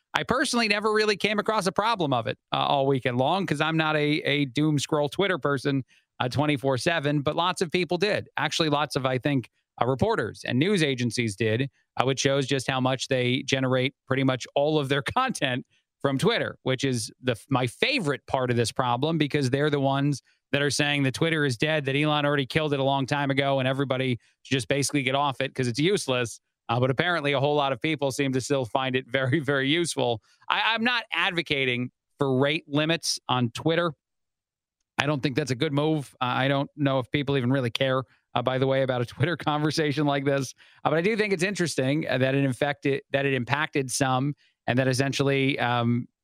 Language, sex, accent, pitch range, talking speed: English, male, American, 130-150 Hz, 215 wpm